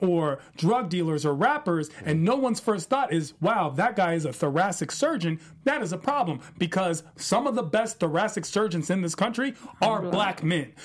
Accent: American